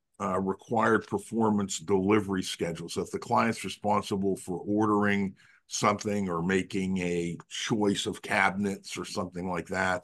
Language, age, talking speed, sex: English, 50-69, 135 wpm, male